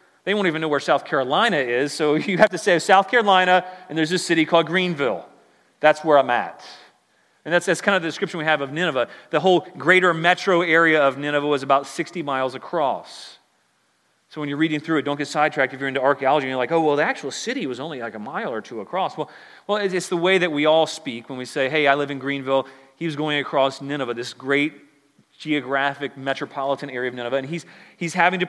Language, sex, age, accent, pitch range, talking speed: English, male, 30-49, American, 145-180 Hz, 235 wpm